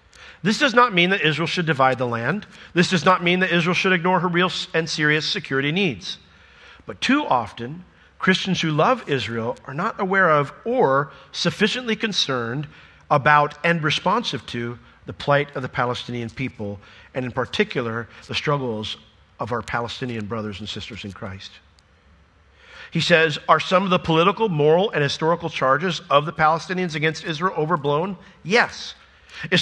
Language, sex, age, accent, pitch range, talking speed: English, male, 50-69, American, 120-175 Hz, 160 wpm